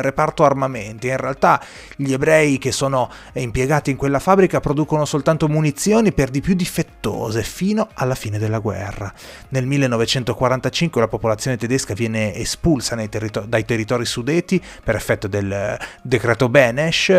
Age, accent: 30-49, native